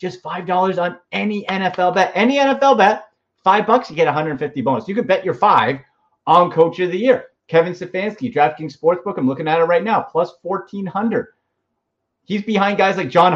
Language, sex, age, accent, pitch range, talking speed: English, male, 30-49, American, 145-195 Hz, 210 wpm